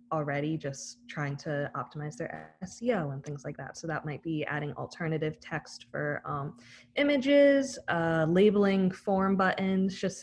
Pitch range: 150-185 Hz